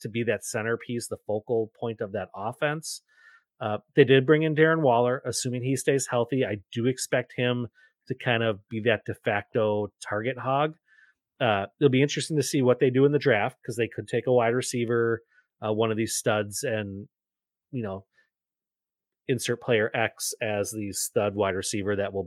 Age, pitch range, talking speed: 30-49, 110-135 Hz, 190 wpm